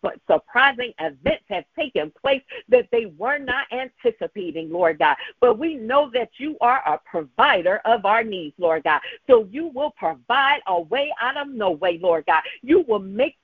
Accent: American